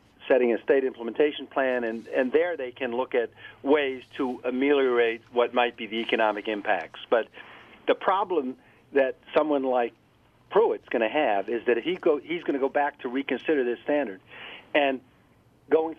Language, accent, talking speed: English, American, 175 wpm